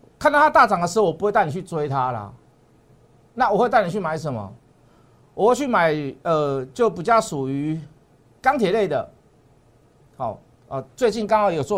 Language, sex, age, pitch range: Chinese, male, 50-69, 145-205 Hz